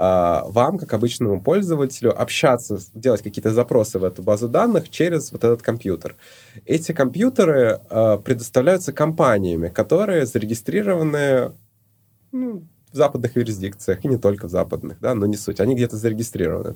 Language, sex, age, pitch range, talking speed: Russian, male, 20-39, 100-130 Hz, 135 wpm